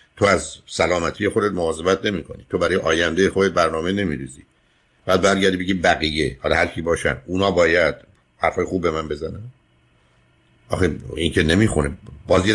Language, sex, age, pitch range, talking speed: Persian, male, 60-79, 75-100 Hz, 160 wpm